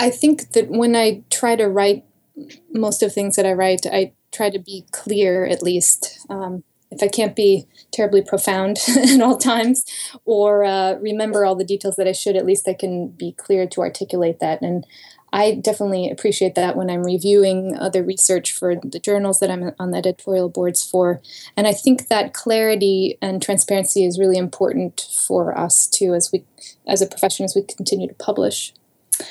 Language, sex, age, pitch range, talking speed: English, female, 20-39, 190-220 Hz, 190 wpm